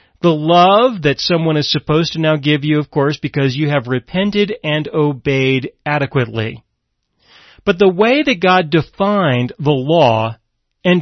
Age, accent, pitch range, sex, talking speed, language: 40-59, American, 145-185 Hz, male, 150 wpm, English